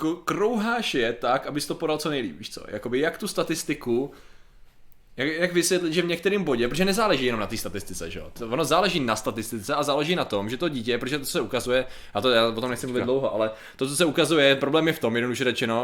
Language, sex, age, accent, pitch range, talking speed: Czech, male, 20-39, native, 125-155 Hz, 230 wpm